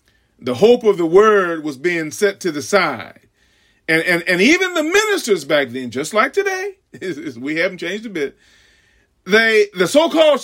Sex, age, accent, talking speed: male, 40-59, American, 170 wpm